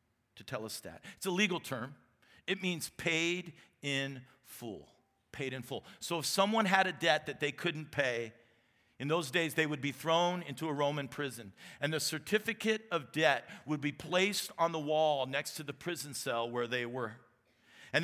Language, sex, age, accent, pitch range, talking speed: English, male, 50-69, American, 145-190 Hz, 190 wpm